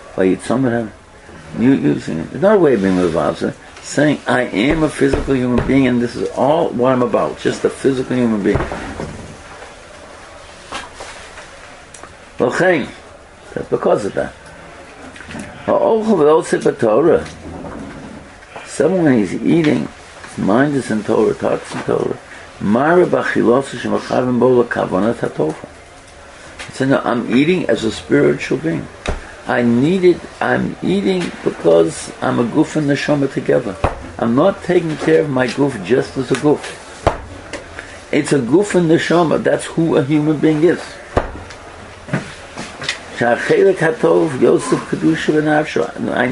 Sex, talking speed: male, 115 wpm